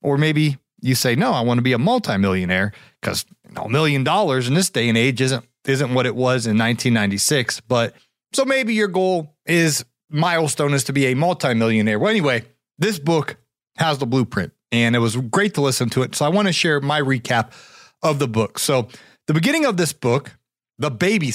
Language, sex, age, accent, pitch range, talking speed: English, male, 30-49, American, 125-165 Hz, 210 wpm